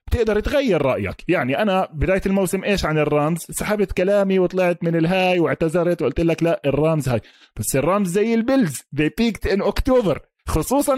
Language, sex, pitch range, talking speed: Arabic, male, 145-205 Hz, 160 wpm